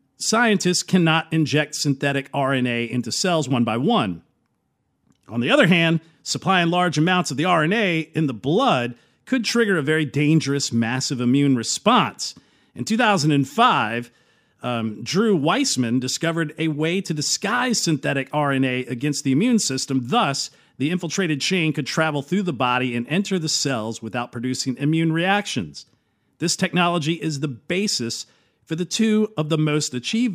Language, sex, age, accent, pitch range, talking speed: English, male, 50-69, American, 130-190 Hz, 150 wpm